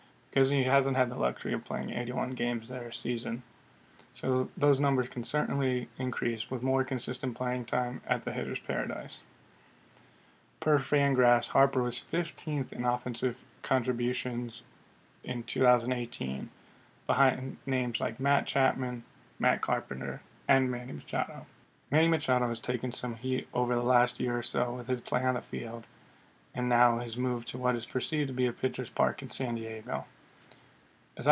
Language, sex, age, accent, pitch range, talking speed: English, male, 20-39, American, 120-135 Hz, 160 wpm